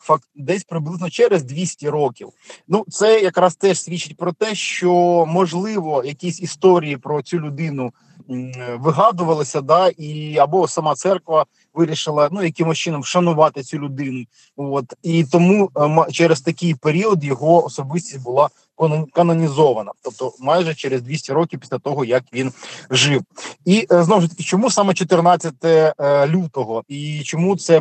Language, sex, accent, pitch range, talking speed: Ukrainian, male, native, 140-175 Hz, 135 wpm